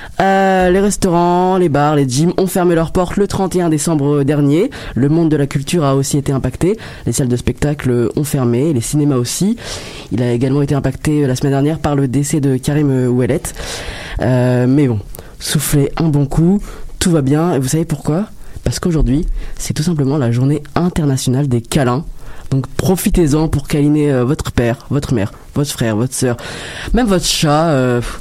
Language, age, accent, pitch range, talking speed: French, 20-39, French, 130-170 Hz, 185 wpm